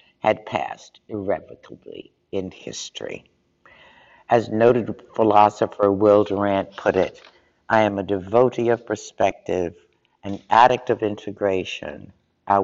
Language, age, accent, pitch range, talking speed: English, 60-79, American, 100-125 Hz, 110 wpm